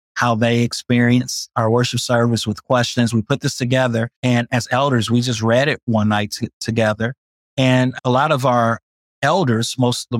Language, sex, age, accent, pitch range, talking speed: English, male, 30-49, American, 115-130 Hz, 180 wpm